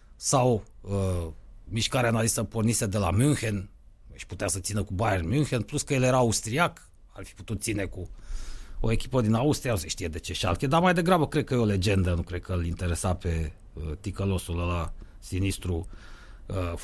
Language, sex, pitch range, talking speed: Romanian, male, 95-145 Hz, 190 wpm